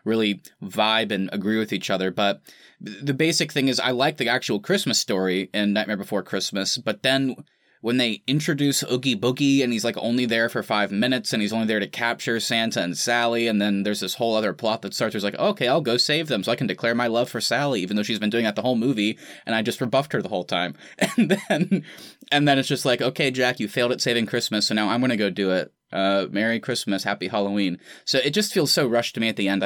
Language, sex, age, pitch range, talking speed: English, male, 20-39, 100-125 Hz, 255 wpm